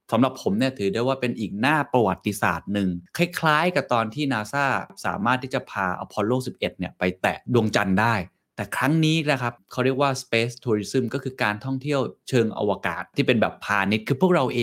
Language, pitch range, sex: Thai, 100-135 Hz, male